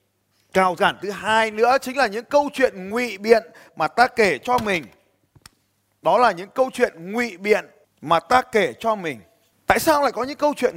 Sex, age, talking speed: male, 20-39, 200 wpm